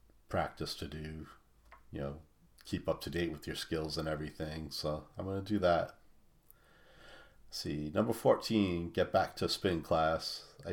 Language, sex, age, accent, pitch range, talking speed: English, male, 40-59, American, 80-95 Hz, 160 wpm